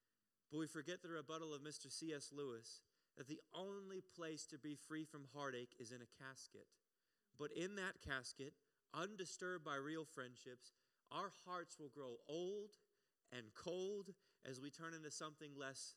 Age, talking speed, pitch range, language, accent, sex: 30-49, 160 wpm, 145-185 Hz, English, American, male